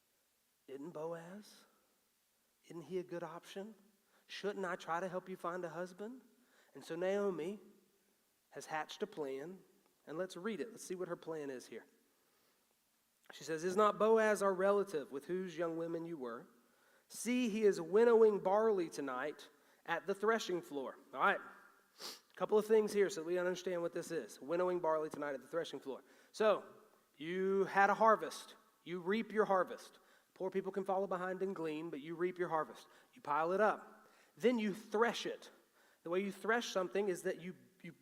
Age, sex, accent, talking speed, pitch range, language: 40-59, male, American, 180 wpm, 160-195 Hz, English